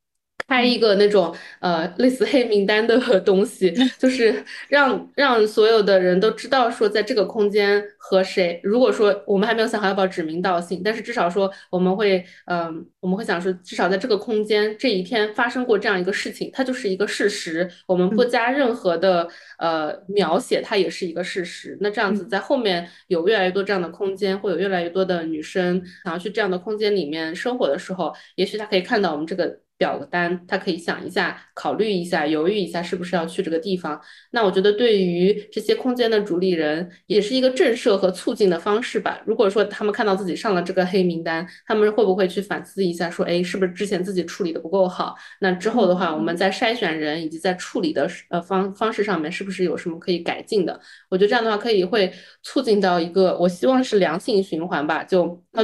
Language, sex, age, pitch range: Chinese, female, 20-39, 180-215 Hz